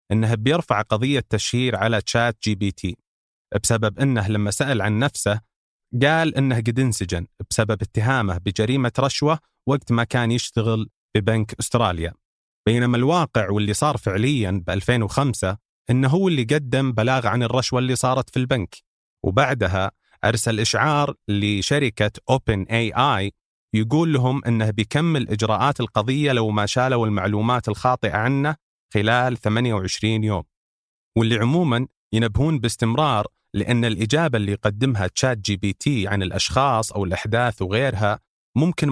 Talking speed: 135 wpm